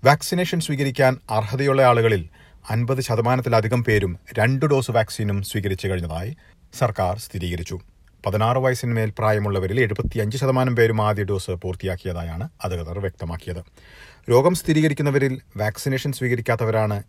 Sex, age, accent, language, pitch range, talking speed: male, 40-59, native, Malayalam, 95-130 Hz, 100 wpm